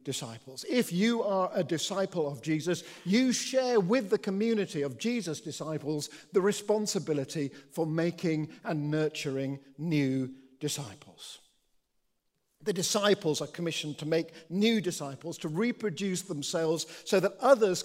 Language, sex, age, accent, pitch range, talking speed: English, male, 50-69, British, 150-195 Hz, 130 wpm